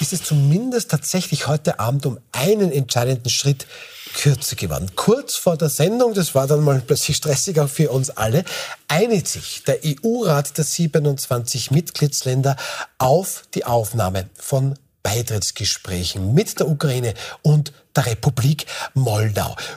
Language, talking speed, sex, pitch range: German, 135 wpm, male, 125-165 Hz